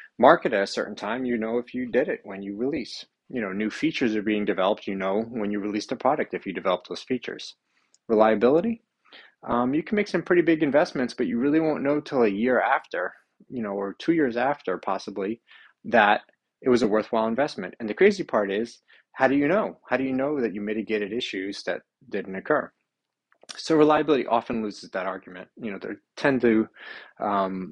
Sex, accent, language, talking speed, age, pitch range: male, American, English, 210 wpm, 30-49, 100-140 Hz